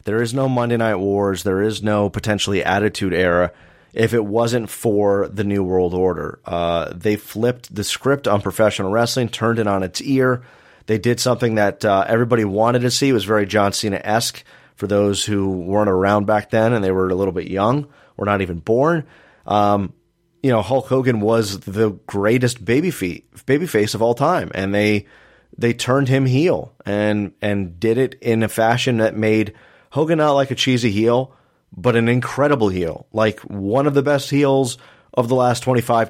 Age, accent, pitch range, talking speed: 30-49, American, 100-120 Hz, 195 wpm